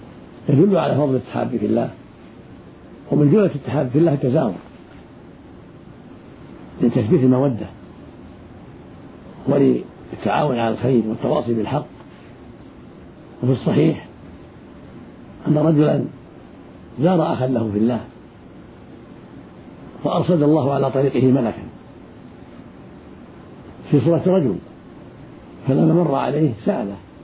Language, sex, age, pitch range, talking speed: Arabic, male, 50-69, 120-155 Hz, 90 wpm